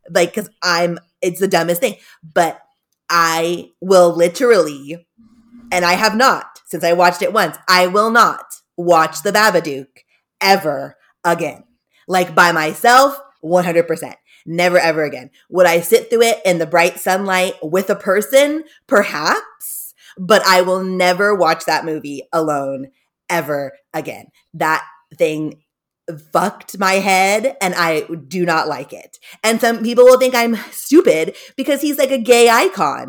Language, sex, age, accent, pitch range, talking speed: English, female, 20-39, American, 170-230 Hz, 150 wpm